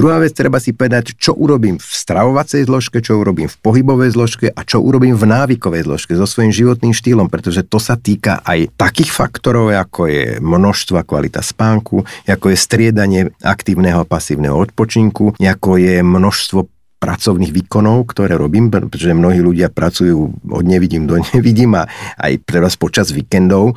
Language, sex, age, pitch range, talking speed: Slovak, male, 50-69, 90-115 Hz, 160 wpm